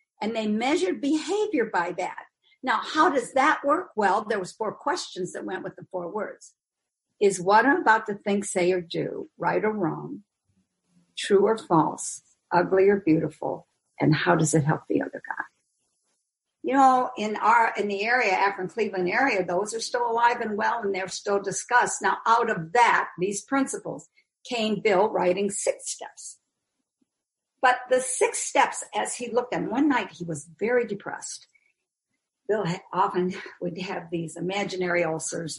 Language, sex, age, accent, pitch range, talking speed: English, female, 50-69, American, 180-250 Hz, 170 wpm